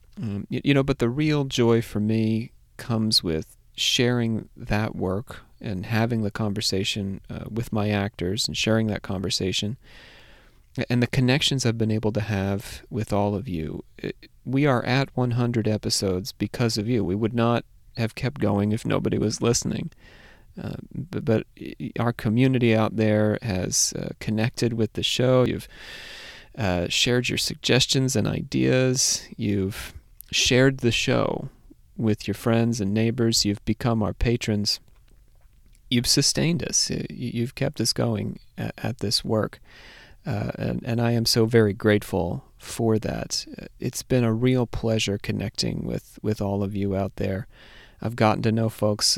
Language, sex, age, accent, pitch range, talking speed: English, male, 30-49, American, 100-120 Hz, 155 wpm